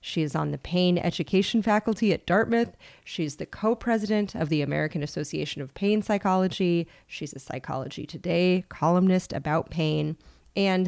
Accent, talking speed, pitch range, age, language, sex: American, 150 wpm, 150-180 Hz, 30-49, English, female